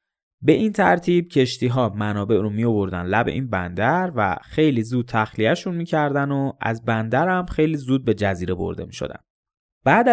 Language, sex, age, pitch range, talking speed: Persian, male, 20-39, 105-145 Hz, 160 wpm